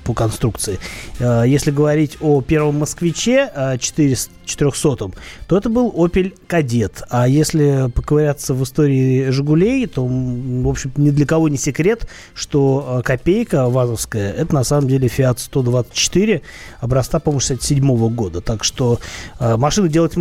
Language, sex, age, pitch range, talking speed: Russian, male, 20-39, 120-155 Hz, 125 wpm